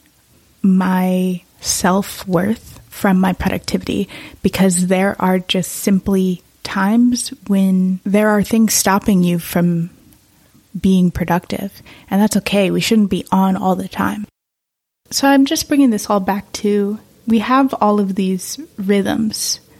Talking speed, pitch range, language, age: 135 wpm, 175-200 Hz, English, 20-39